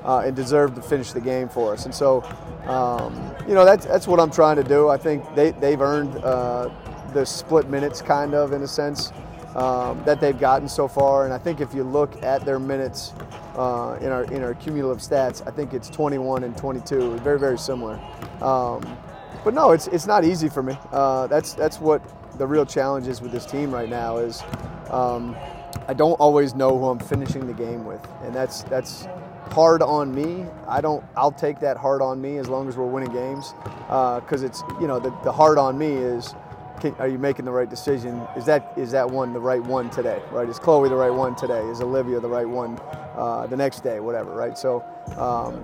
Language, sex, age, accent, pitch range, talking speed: English, male, 30-49, American, 125-150 Hz, 220 wpm